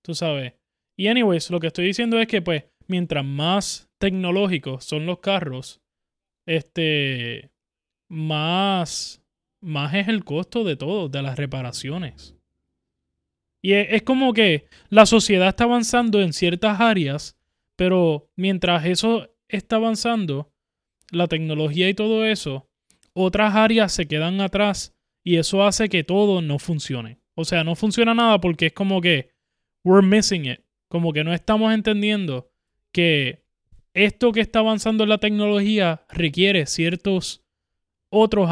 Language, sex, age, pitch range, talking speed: Spanish, male, 20-39, 155-200 Hz, 140 wpm